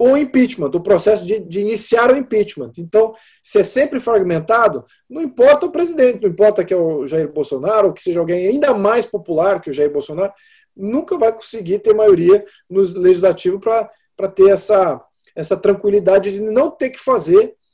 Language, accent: Portuguese, Brazilian